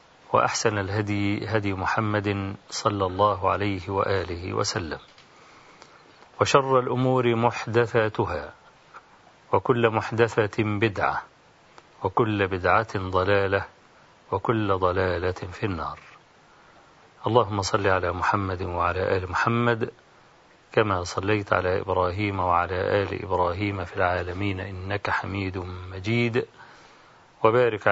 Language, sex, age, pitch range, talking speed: Arabic, male, 40-59, 95-130 Hz, 90 wpm